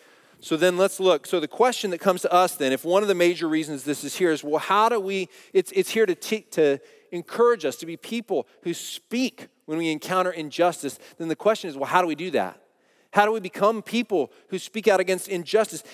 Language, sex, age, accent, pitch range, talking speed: English, male, 40-59, American, 180-220 Hz, 235 wpm